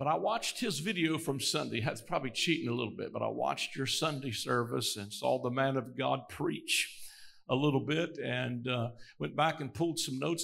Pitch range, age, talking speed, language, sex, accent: 125-170 Hz, 50-69, 215 wpm, English, male, American